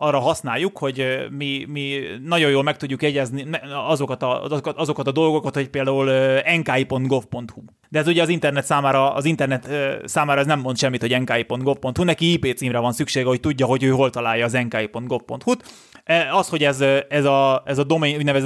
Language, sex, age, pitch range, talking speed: Hungarian, male, 20-39, 130-160 Hz, 165 wpm